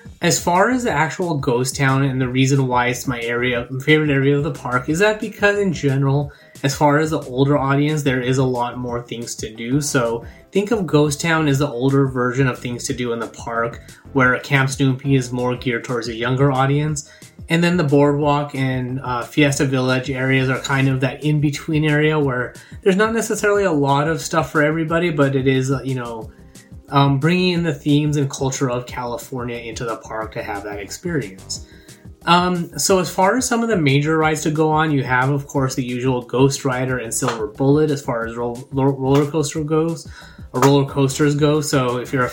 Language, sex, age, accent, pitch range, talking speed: English, male, 20-39, American, 125-150 Hz, 215 wpm